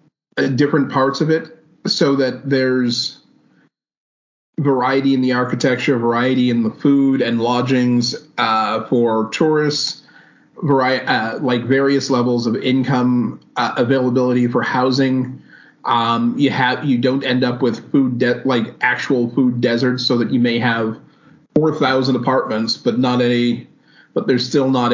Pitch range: 120-140 Hz